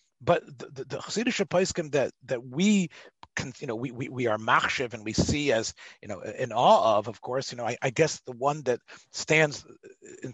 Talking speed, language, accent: 220 wpm, English, American